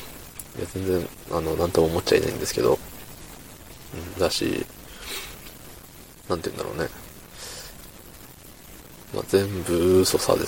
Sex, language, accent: male, Japanese, native